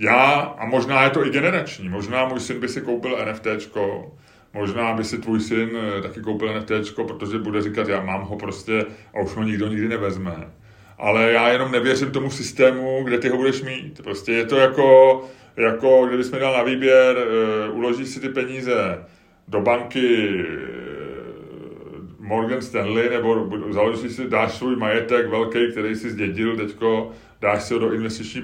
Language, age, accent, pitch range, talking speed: Czech, 30-49, native, 105-130 Hz, 165 wpm